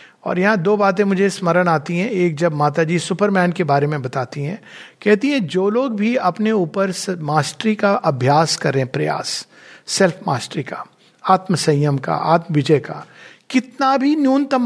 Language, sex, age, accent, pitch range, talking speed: Hindi, male, 50-69, native, 180-240 Hz, 170 wpm